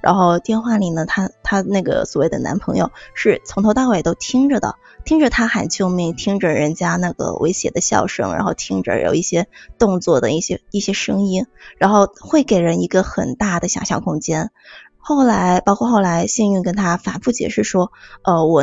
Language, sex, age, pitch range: Chinese, female, 20-39, 180-230 Hz